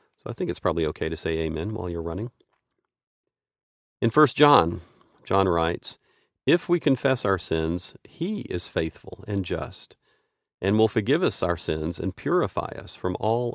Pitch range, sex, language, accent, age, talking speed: 90-120 Hz, male, English, American, 40-59, 165 wpm